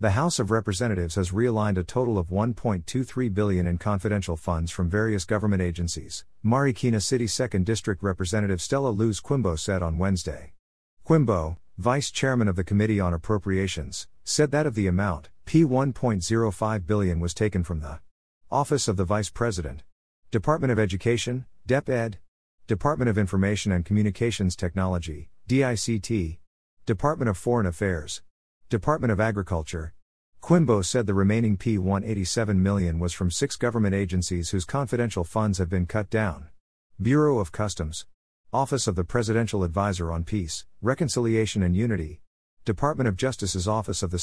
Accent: American